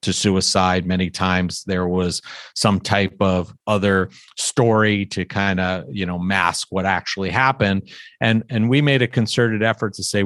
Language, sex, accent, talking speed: English, male, American, 170 wpm